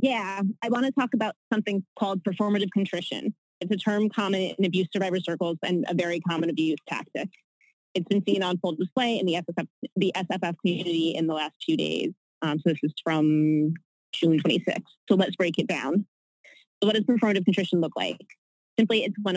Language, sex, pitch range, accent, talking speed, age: English, female, 170-200 Hz, American, 185 wpm, 20-39